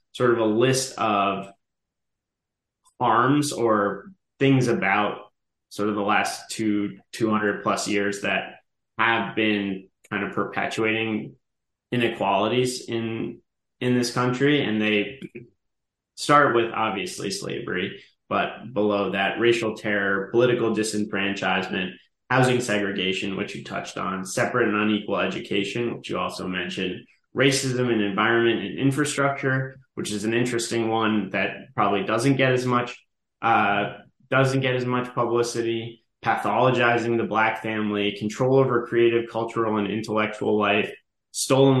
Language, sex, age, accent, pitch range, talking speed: English, male, 20-39, American, 105-125 Hz, 130 wpm